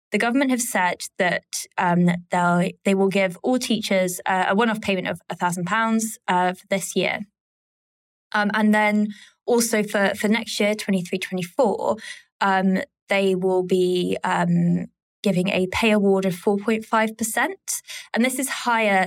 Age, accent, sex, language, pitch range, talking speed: 20-39, British, female, English, 180-215 Hz, 145 wpm